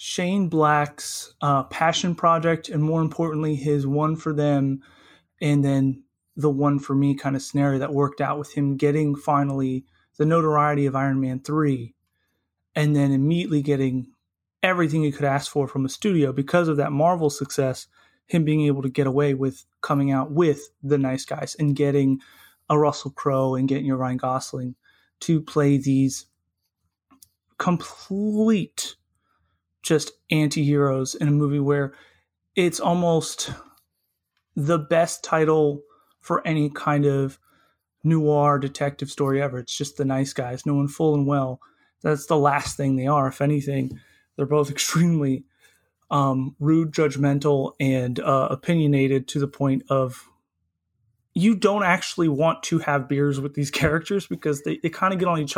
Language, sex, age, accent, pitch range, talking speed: English, male, 30-49, American, 135-155 Hz, 160 wpm